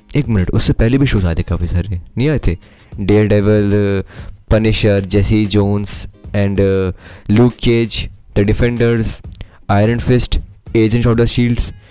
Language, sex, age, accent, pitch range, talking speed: English, male, 20-39, Indian, 95-115 Hz, 130 wpm